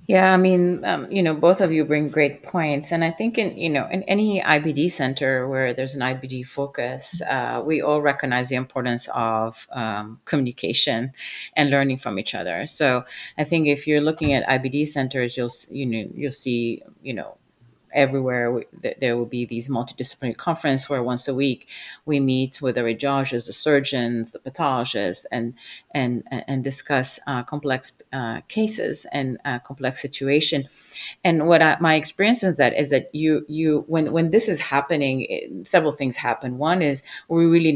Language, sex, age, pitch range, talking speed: English, female, 30-49, 130-155 Hz, 180 wpm